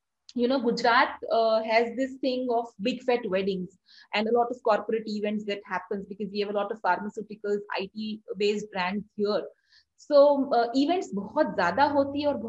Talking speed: 175 wpm